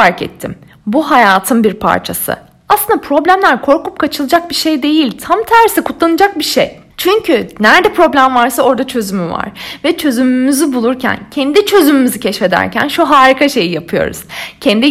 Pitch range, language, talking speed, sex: 235-340 Hz, Turkish, 145 wpm, female